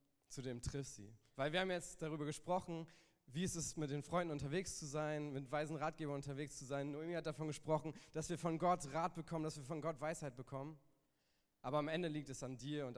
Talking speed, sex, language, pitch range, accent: 230 wpm, male, German, 120-160 Hz, German